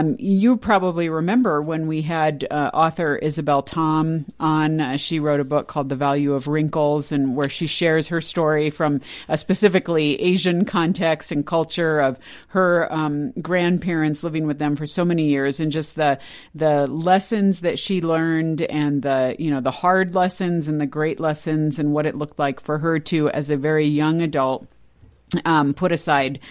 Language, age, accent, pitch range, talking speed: English, 50-69, American, 145-170 Hz, 185 wpm